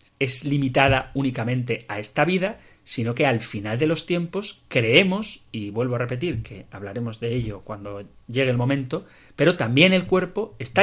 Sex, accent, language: male, Spanish, Spanish